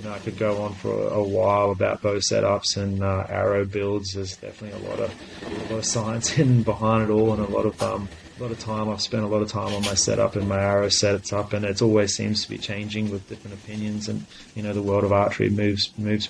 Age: 30-49